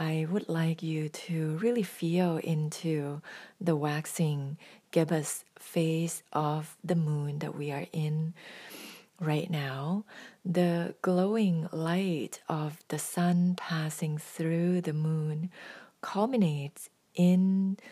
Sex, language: female, English